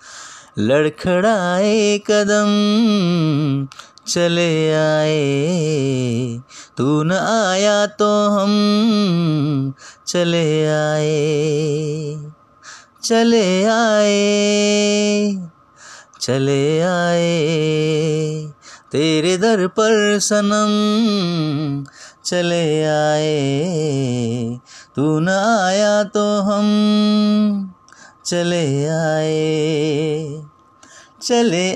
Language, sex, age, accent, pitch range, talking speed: Hindi, male, 30-49, native, 155-225 Hz, 60 wpm